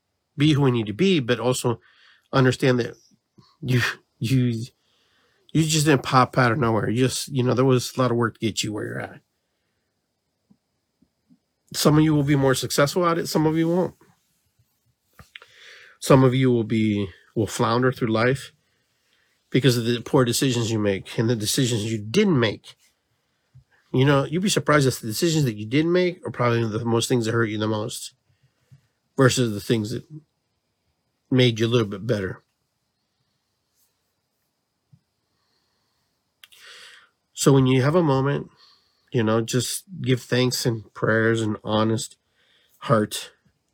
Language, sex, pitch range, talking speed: English, male, 110-135 Hz, 160 wpm